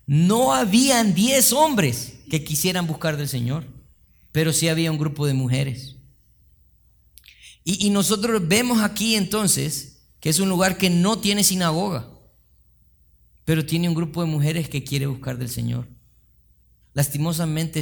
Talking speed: 140 wpm